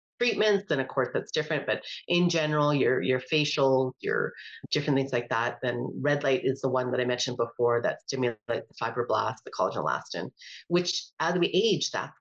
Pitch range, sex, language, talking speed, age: 145-190 Hz, female, English, 190 wpm, 40-59